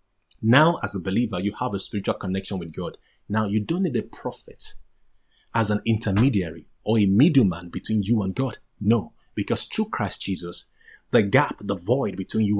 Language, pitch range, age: English, 100-135 Hz, 30-49